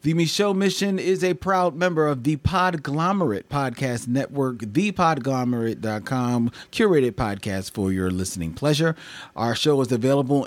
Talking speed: 130 wpm